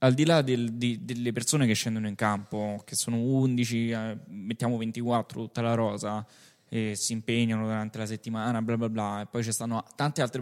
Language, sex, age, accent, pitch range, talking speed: Italian, male, 10-29, native, 115-150 Hz, 190 wpm